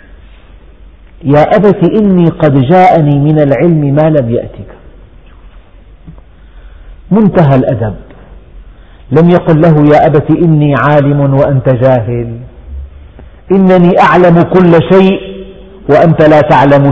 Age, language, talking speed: 50-69, Arabic, 100 wpm